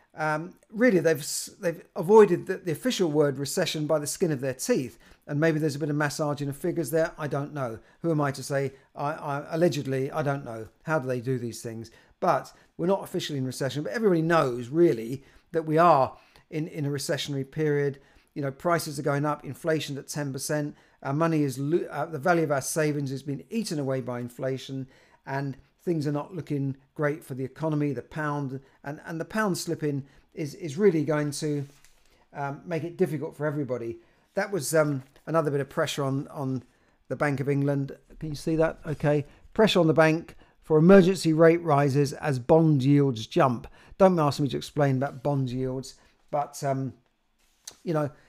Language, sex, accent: English, male, British